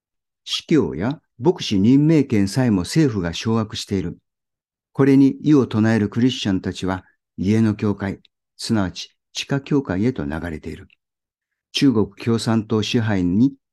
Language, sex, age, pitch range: Japanese, male, 50-69, 95-140 Hz